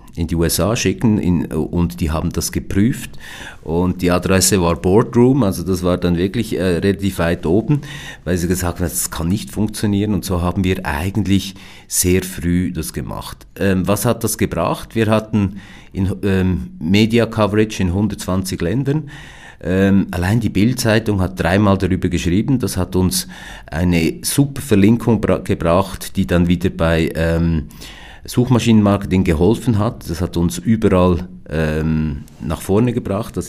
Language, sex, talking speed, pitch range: German, male, 155 wpm, 85-100 Hz